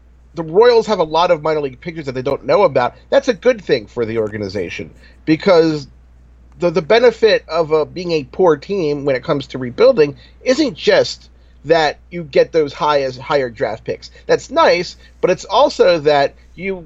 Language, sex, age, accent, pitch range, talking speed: English, male, 40-59, American, 120-195 Hz, 190 wpm